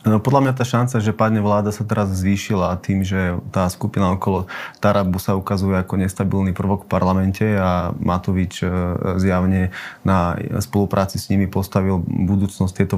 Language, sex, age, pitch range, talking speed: Slovak, male, 30-49, 95-100 Hz, 155 wpm